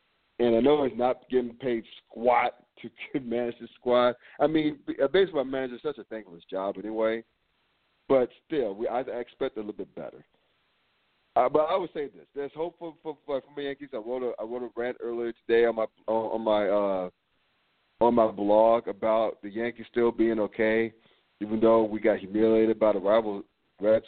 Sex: male